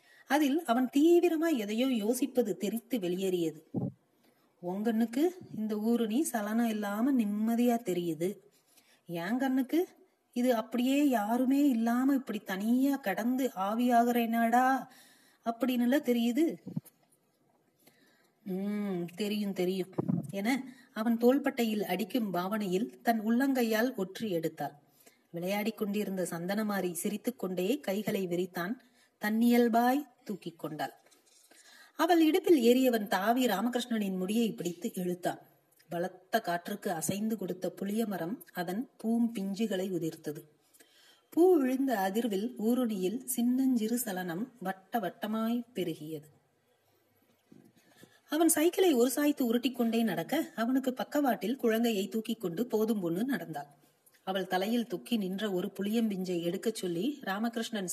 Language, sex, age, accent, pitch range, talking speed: Tamil, female, 30-49, native, 185-245 Hz, 95 wpm